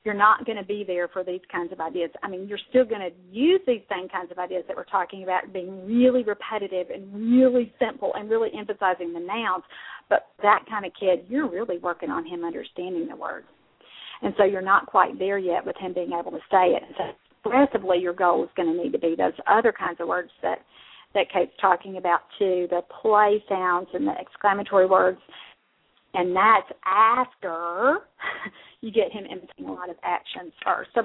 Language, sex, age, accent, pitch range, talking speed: English, female, 40-59, American, 180-220 Hz, 205 wpm